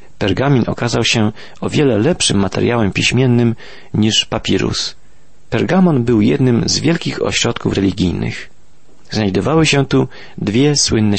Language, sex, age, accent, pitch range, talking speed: Polish, male, 40-59, native, 100-125 Hz, 120 wpm